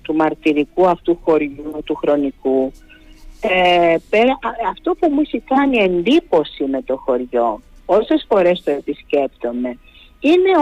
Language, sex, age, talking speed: Greek, female, 50-69, 120 wpm